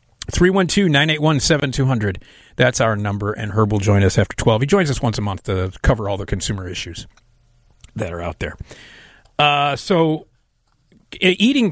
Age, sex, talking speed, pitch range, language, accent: 40-59, male, 165 wpm, 110-145 Hz, English, American